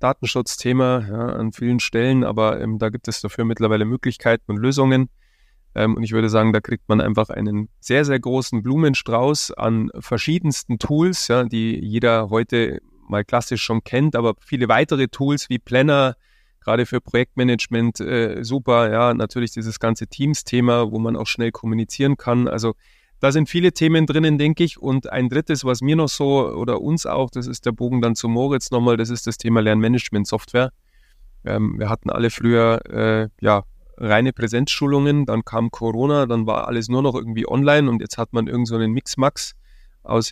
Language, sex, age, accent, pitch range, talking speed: German, male, 20-39, German, 115-130 Hz, 180 wpm